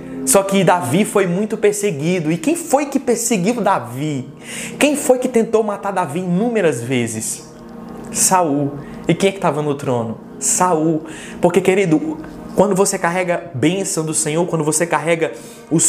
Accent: Brazilian